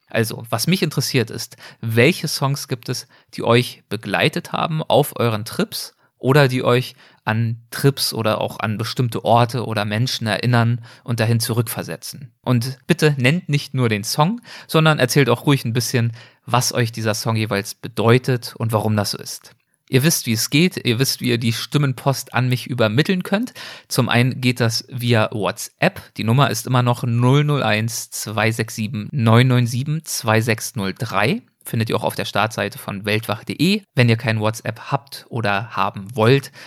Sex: male